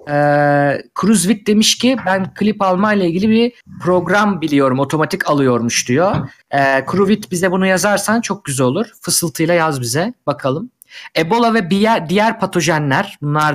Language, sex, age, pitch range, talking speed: Turkish, male, 50-69, 145-220 Hz, 145 wpm